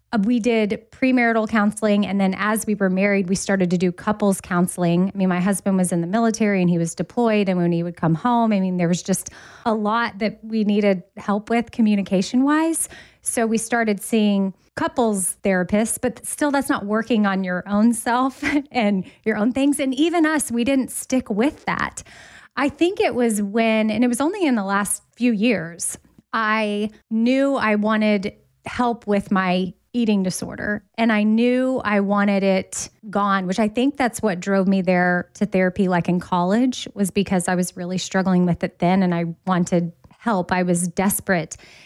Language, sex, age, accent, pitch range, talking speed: English, female, 20-39, American, 190-235 Hz, 190 wpm